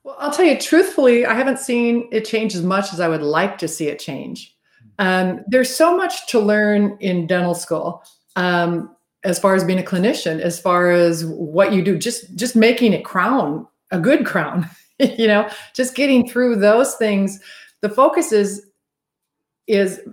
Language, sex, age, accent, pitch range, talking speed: English, female, 40-59, American, 180-230 Hz, 180 wpm